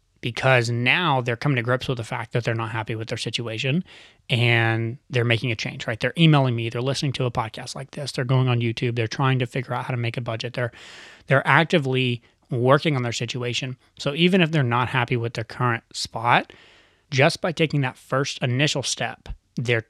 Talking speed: 215 wpm